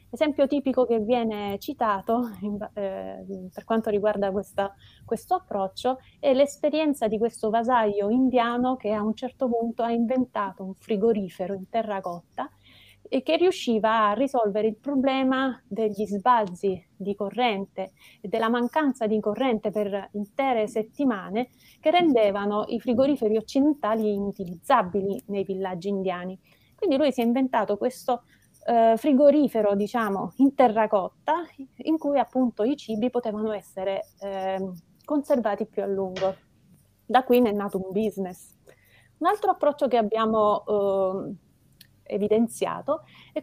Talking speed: 130 wpm